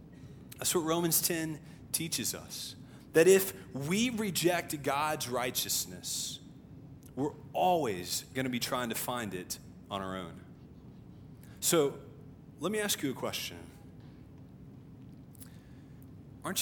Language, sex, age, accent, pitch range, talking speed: English, male, 30-49, American, 120-160 Hz, 115 wpm